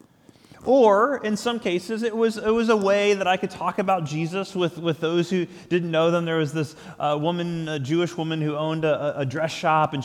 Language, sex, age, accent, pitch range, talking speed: English, male, 20-39, American, 140-190 Hz, 225 wpm